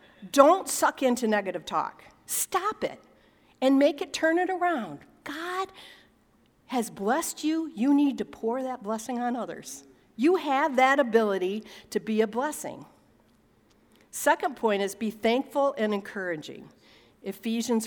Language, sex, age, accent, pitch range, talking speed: English, female, 50-69, American, 180-260 Hz, 140 wpm